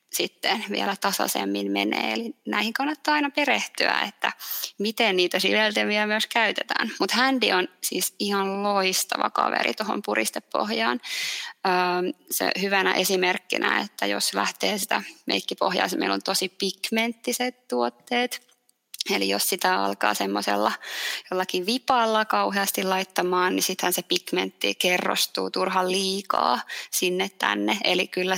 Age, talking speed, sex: 20-39, 125 wpm, female